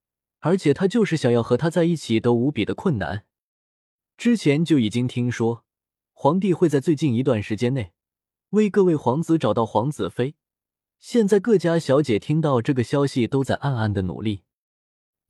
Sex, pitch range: male, 110-160 Hz